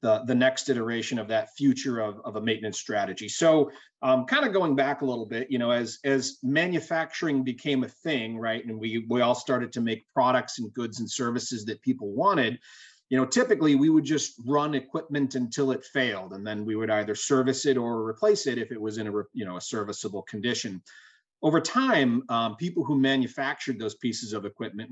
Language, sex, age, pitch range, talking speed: English, male, 30-49, 110-140 Hz, 205 wpm